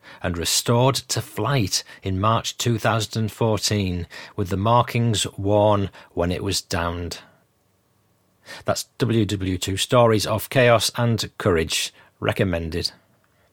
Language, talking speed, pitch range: English, 120 wpm, 100-120 Hz